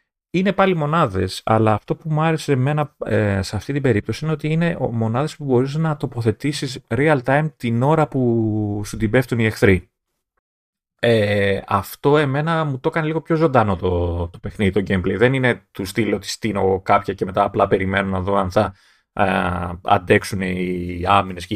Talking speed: 180 wpm